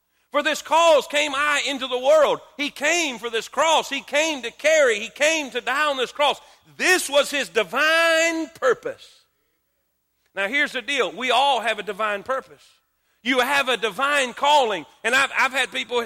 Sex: male